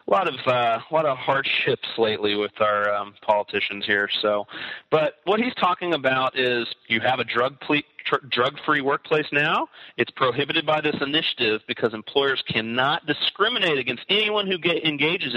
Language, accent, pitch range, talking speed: English, American, 115-160 Hz, 170 wpm